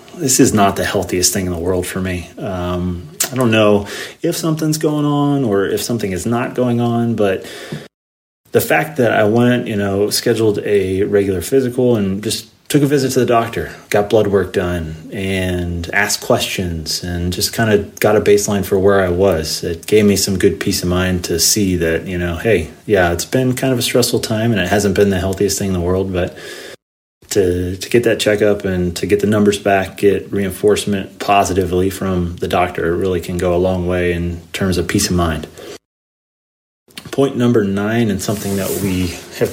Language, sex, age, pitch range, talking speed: English, male, 30-49, 90-115 Hz, 205 wpm